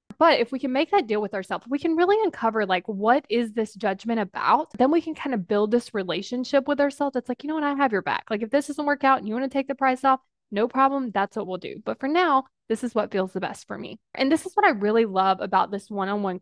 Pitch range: 205-275 Hz